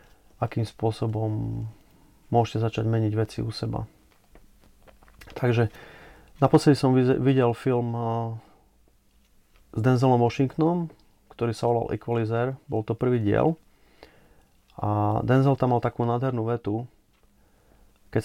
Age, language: 30-49, Slovak